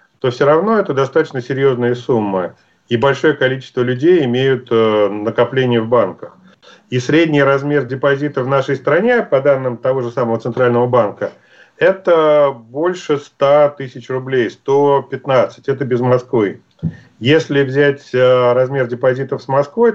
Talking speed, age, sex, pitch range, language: 140 wpm, 40-59, male, 125-150 Hz, Russian